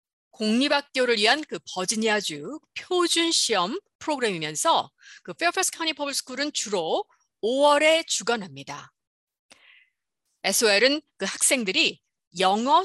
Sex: female